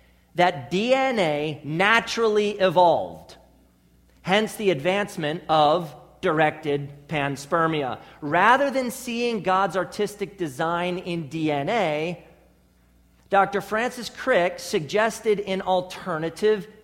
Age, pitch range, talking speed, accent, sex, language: 40-59, 125-200 Hz, 85 wpm, American, male, English